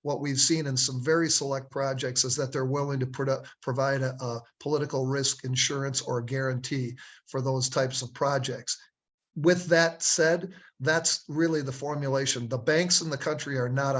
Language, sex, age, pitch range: English, male, 50-69, 130-150 Hz